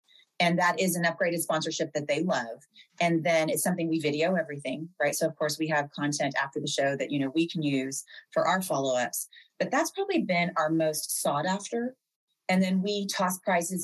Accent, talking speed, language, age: American, 210 wpm, English, 30-49